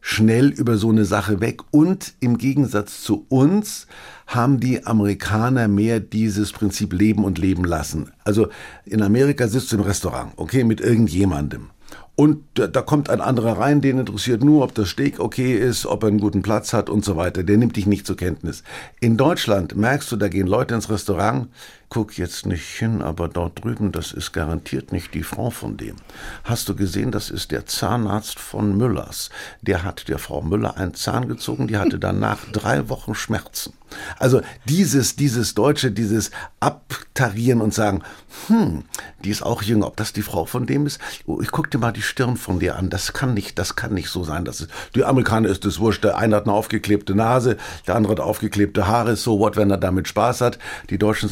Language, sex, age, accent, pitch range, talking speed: German, male, 50-69, German, 100-120 Hz, 200 wpm